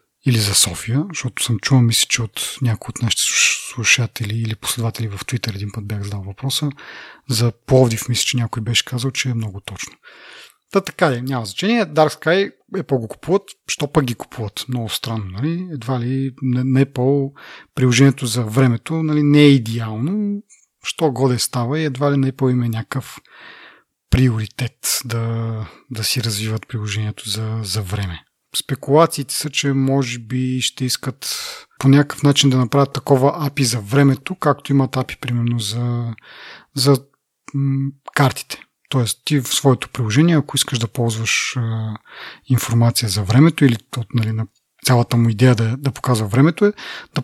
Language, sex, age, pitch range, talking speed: Bulgarian, male, 40-59, 115-145 Hz, 165 wpm